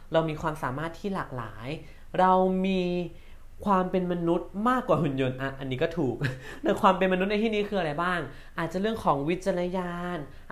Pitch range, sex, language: 140-180 Hz, male, Thai